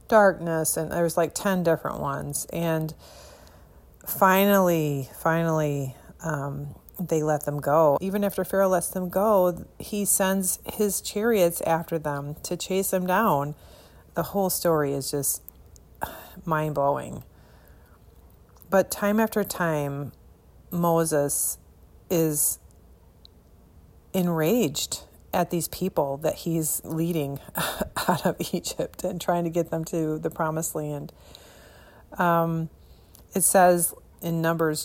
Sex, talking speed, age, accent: female, 115 wpm, 40-59, American